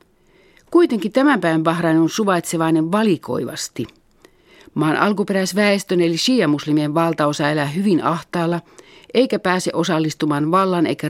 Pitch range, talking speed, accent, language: 150-190 Hz, 110 wpm, native, Finnish